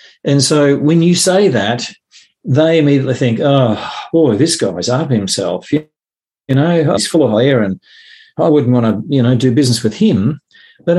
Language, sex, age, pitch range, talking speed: English, male, 50-69, 120-160 Hz, 180 wpm